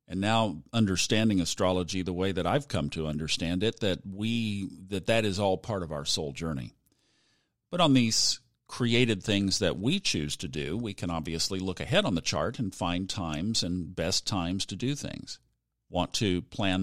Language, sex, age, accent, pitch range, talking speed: English, male, 50-69, American, 90-120 Hz, 190 wpm